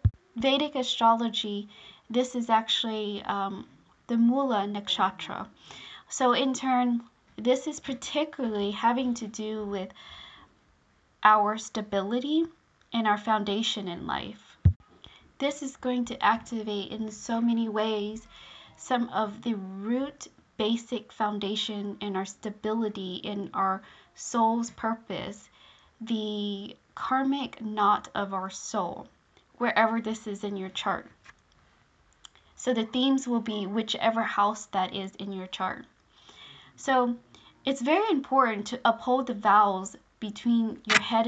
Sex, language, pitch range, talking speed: female, English, 205-250 Hz, 120 wpm